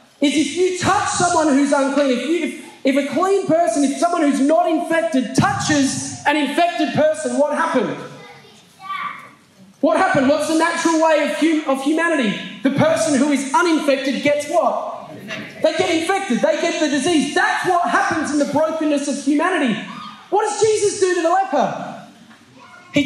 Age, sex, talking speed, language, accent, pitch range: 20-39, male, 170 wpm, English, Australian, 290-365 Hz